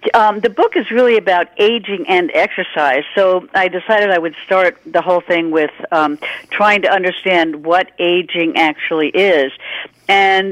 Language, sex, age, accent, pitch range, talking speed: English, female, 60-79, American, 165-215 Hz, 160 wpm